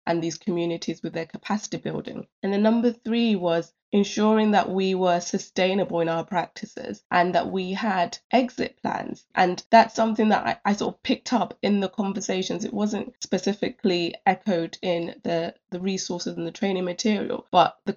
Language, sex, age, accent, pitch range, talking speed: English, female, 20-39, British, 175-210 Hz, 175 wpm